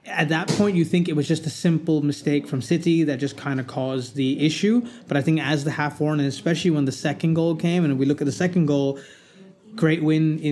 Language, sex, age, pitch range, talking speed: English, male, 20-39, 140-170 Hz, 250 wpm